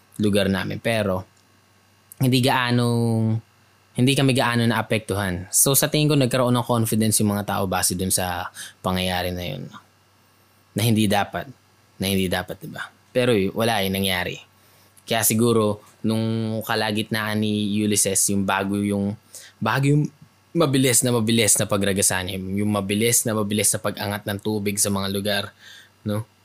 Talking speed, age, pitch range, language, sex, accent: 150 wpm, 20-39, 100-110 Hz, Filipino, male, native